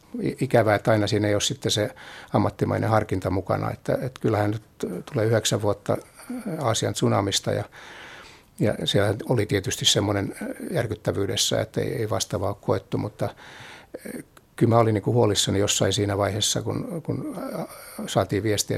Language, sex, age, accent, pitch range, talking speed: Finnish, male, 60-79, native, 105-125 Hz, 145 wpm